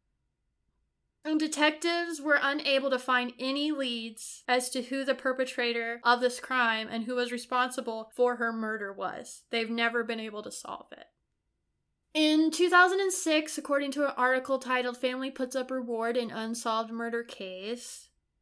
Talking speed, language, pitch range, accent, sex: 150 wpm, English, 230-270 Hz, American, female